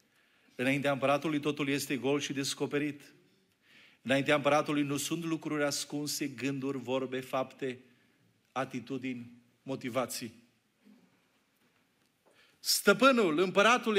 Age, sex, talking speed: 40-59, male, 85 wpm